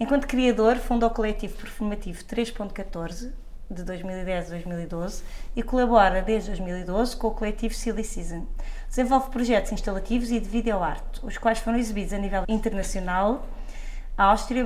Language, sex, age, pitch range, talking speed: Portuguese, female, 20-39, 195-230 Hz, 145 wpm